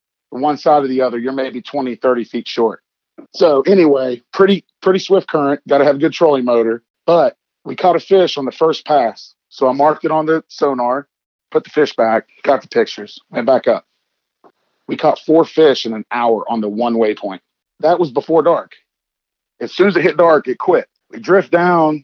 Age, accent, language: 40-59, American, English